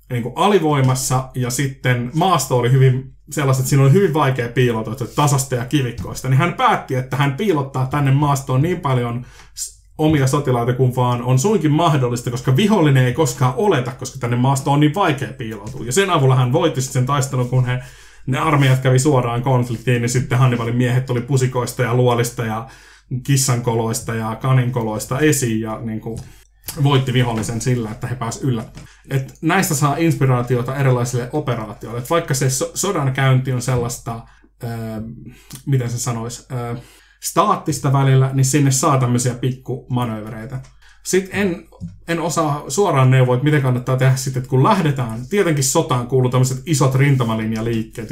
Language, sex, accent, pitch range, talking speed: Finnish, male, native, 120-140 Hz, 160 wpm